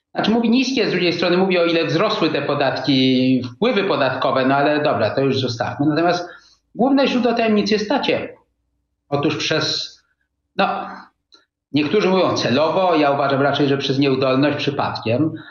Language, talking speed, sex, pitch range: Polish, 145 wpm, male, 120-165 Hz